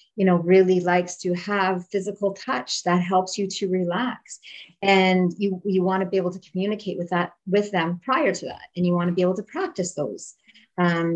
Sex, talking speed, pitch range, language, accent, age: female, 200 wpm, 175-205 Hz, English, American, 30-49